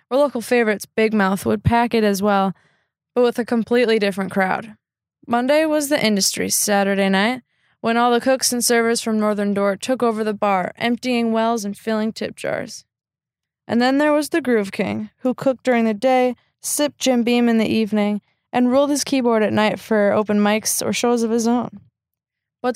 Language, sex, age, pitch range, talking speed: English, female, 20-39, 200-240 Hz, 195 wpm